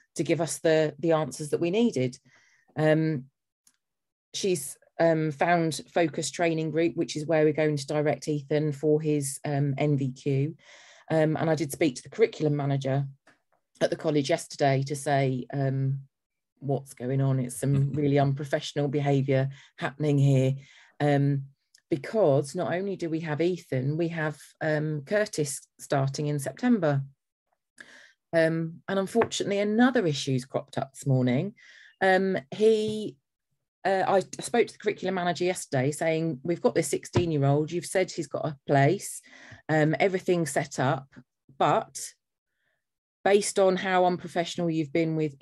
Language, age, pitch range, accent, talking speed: English, 30-49, 140-180 Hz, British, 150 wpm